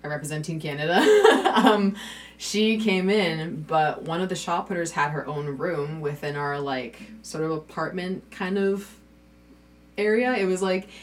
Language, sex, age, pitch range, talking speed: English, female, 20-39, 145-195 Hz, 150 wpm